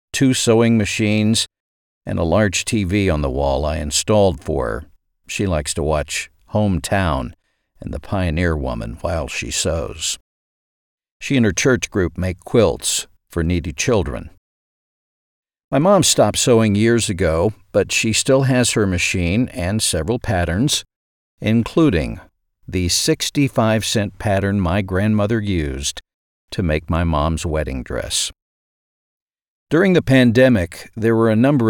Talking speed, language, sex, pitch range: 135 wpm, English, male, 85-115 Hz